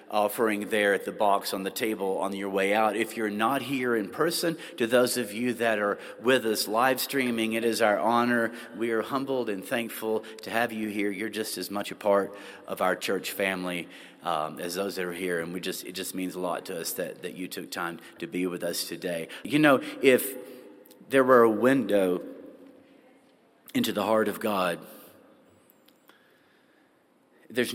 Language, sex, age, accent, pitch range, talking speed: English, male, 40-59, American, 100-125 Hz, 195 wpm